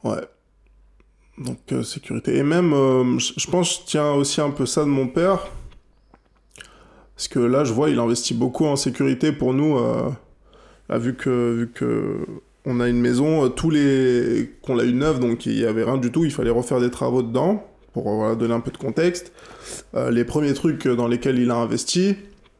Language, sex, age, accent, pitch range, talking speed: French, male, 20-39, French, 120-150 Hz, 205 wpm